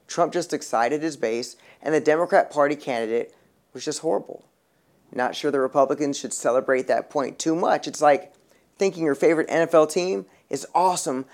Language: English